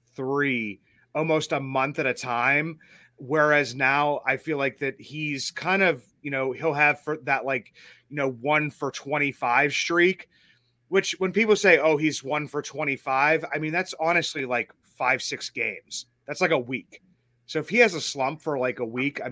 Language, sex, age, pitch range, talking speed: English, male, 30-49, 125-150 Hz, 190 wpm